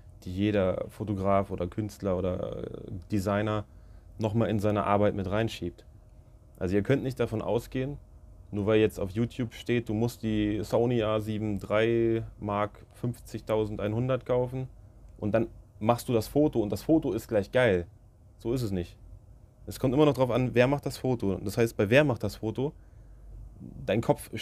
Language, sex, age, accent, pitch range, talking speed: German, male, 30-49, German, 105-120 Hz, 170 wpm